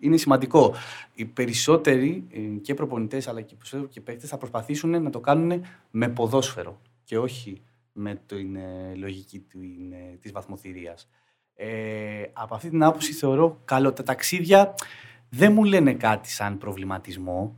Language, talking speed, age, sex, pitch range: Greek, 130 wpm, 30-49, male, 105-140 Hz